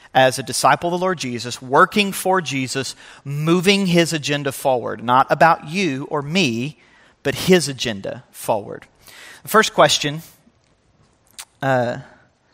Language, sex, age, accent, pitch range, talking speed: English, male, 40-59, American, 130-170 Hz, 125 wpm